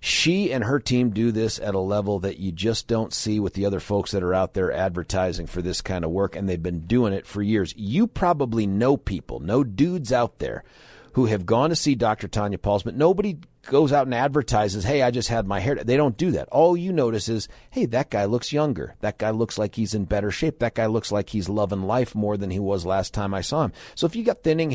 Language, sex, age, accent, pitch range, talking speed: English, male, 40-59, American, 95-120 Hz, 255 wpm